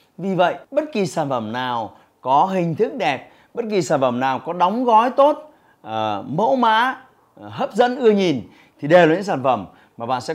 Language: Vietnamese